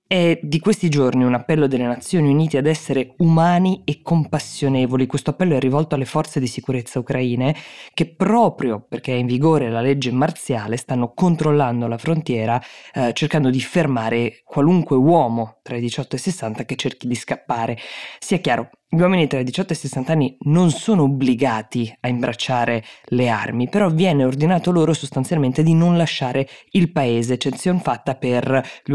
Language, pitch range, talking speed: Italian, 125-155 Hz, 175 wpm